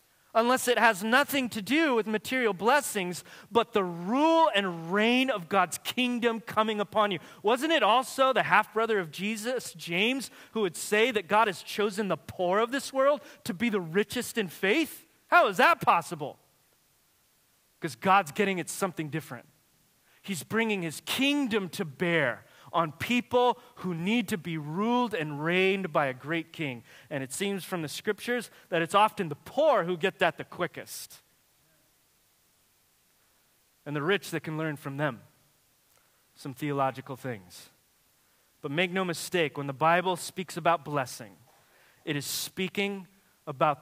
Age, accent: 30-49, American